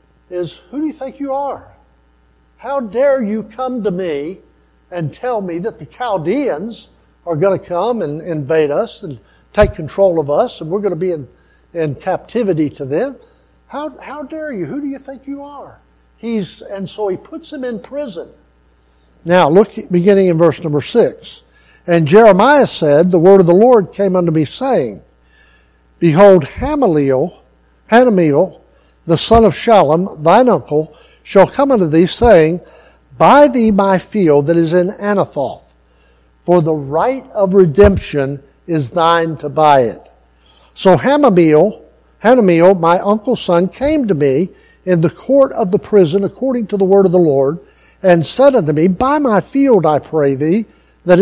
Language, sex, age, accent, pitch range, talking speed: English, male, 60-79, American, 155-225 Hz, 165 wpm